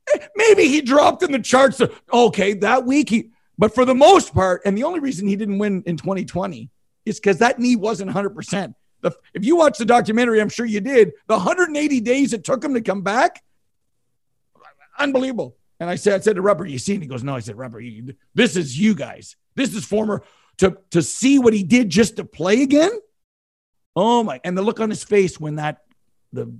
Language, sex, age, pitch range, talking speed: English, male, 50-69, 160-230 Hz, 210 wpm